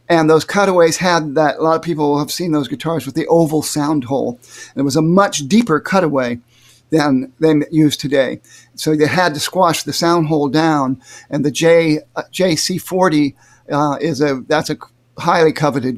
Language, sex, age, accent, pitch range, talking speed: English, male, 50-69, American, 135-165 Hz, 190 wpm